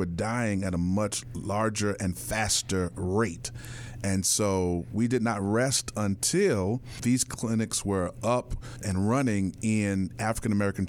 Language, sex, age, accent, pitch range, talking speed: English, male, 40-59, American, 100-120 Hz, 130 wpm